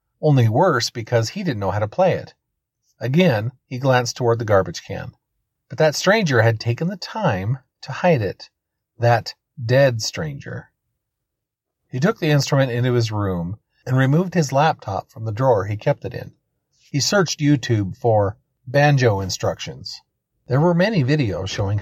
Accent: American